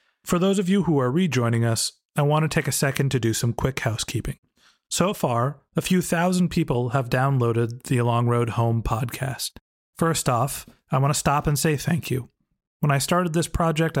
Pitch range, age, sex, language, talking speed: 125-155 Hz, 40-59, male, English, 200 wpm